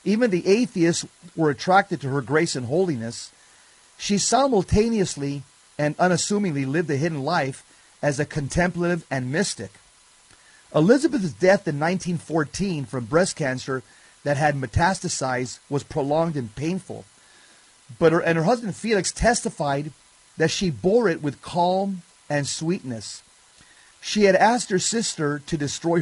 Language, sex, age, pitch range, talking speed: English, male, 40-59, 140-185 Hz, 135 wpm